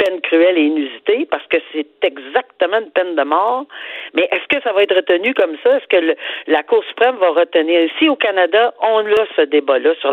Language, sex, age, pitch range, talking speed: French, female, 50-69, 160-245 Hz, 220 wpm